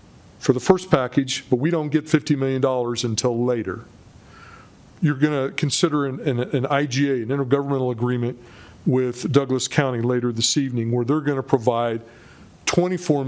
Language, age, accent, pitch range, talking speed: English, 50-69, American, 125-145 Hz, 155 wpm